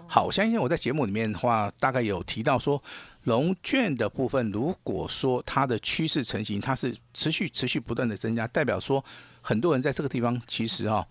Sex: male